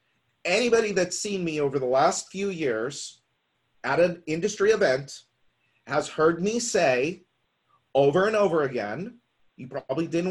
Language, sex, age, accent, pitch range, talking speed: English, male, 40-59, American, 135-185 Hz, 140 wpm